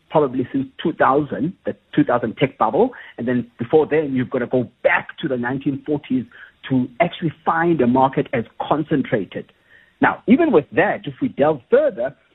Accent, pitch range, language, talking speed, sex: South African, 130-185 Hz, English, 165 wpm, male